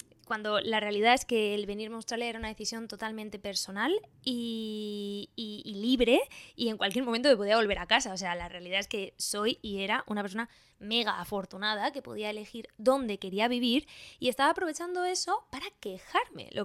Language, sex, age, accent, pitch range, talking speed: Spanish, female, 20-39, Spanish, 210-255 Hz, 190 wpm